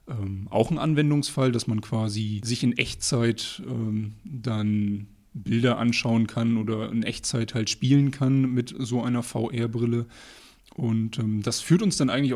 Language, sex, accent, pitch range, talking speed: German, male, German, 110-130 Hz, 155 wpm